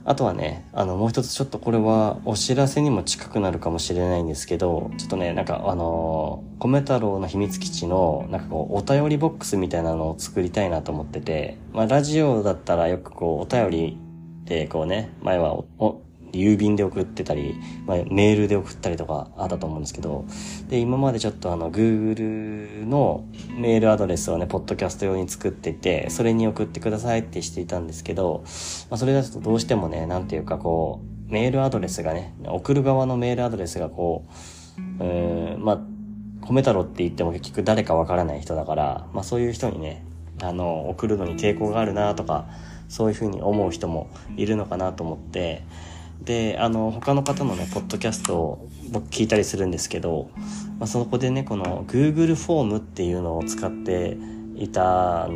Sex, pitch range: male, 85-110 Hz